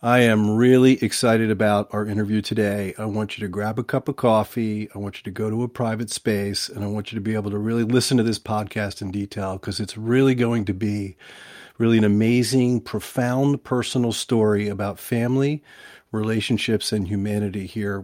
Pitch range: 105-120 Hz